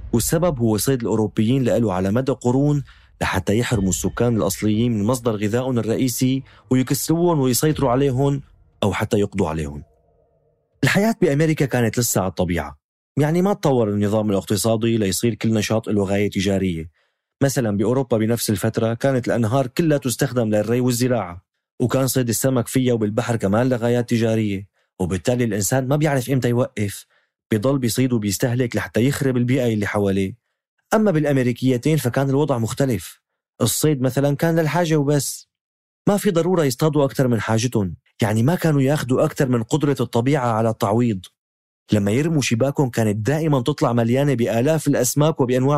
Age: 30-49